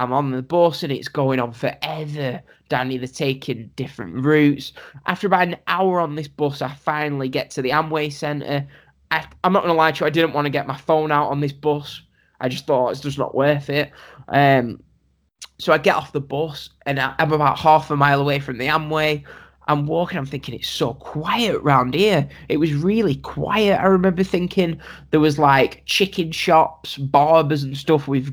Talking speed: 205 wpm